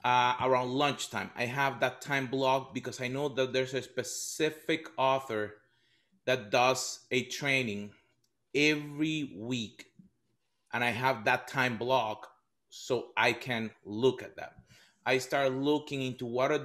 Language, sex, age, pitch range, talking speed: English, male, 30-49, 125-150 Hz, 145 wpm